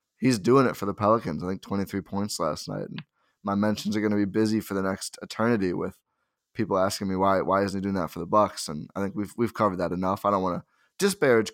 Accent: American